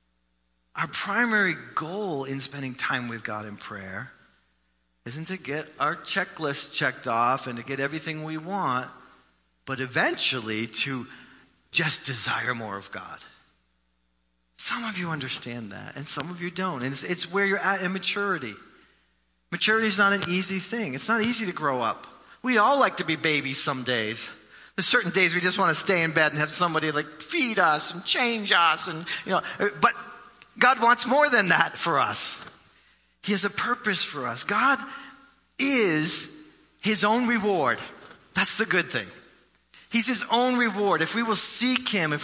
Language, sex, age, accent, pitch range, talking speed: English, male, 40-59, American, 125-200 Hz, 175 wpm